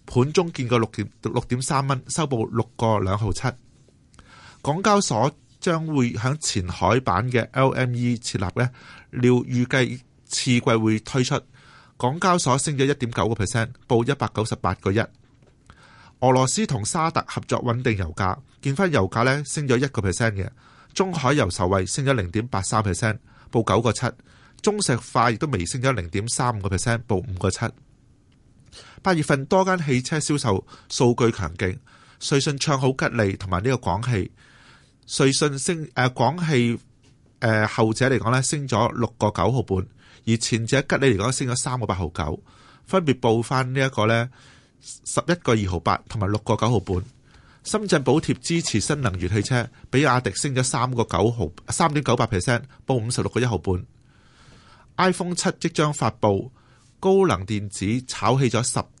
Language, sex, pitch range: Chinese, male, 110-135 Hz